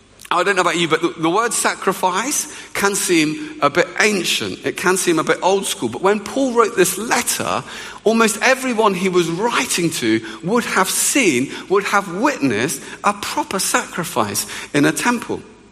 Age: 50-69